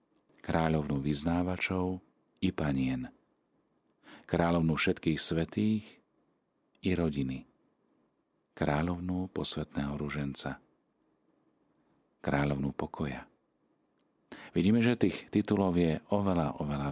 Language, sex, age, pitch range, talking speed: Slovak, male, 40-59, 75-95 Hz, 75 wpm